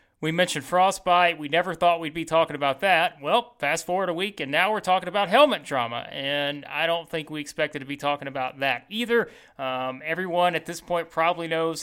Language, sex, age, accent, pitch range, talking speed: English, male, 30-49, American, 145-185 Hz, 215 wpm